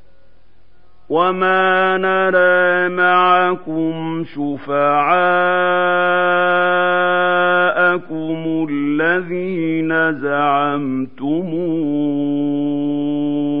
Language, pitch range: Arabic, 120-160 Hz